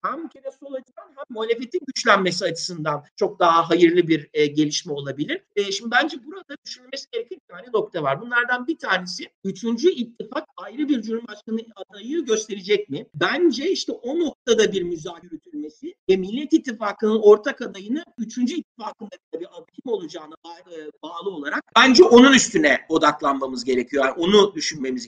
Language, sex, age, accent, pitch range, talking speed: Turkish, male, 50-69, native, 180-260 Hz, 150 wpm